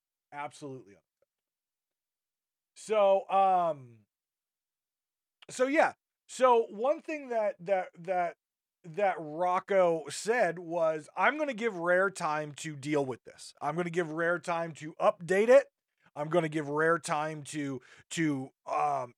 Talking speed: 135 wpm